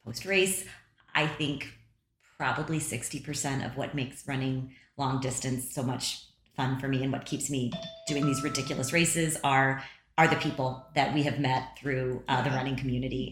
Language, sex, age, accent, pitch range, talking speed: English, female, 30-49, American, 130-155 Hz, 165 wpm